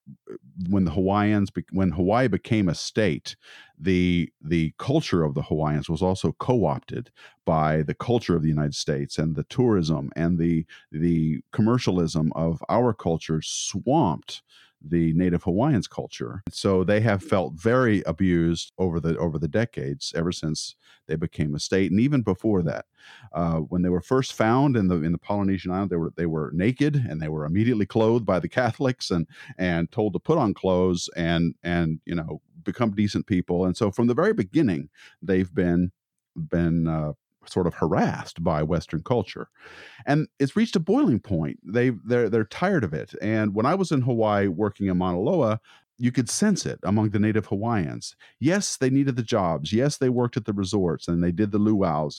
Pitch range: 85-115 Hz